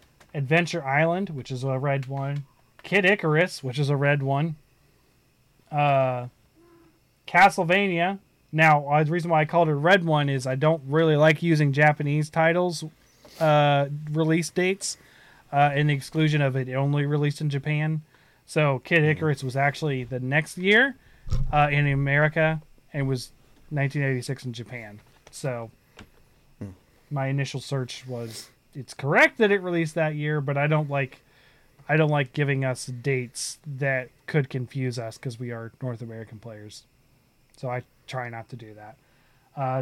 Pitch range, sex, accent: 130-155 Hz, male, American